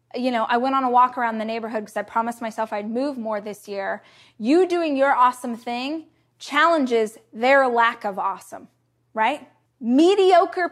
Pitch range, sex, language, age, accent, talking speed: 240-310 Hz, female, English, 20-39, American, 175 wpm